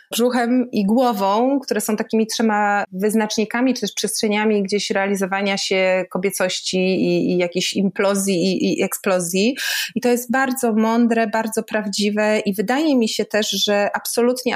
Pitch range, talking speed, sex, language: 200-230 Hz, 150 wpm, female, Polish